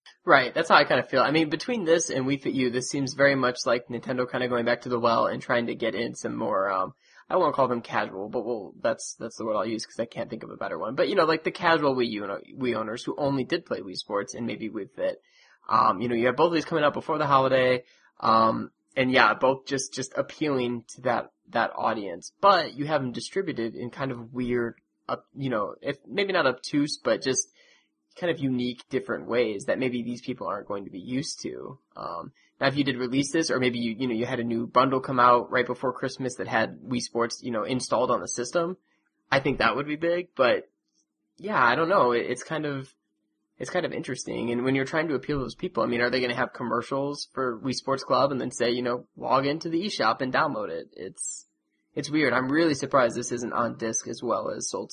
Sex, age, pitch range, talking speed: male, 20-39, 120-145 Hz, 250 wpm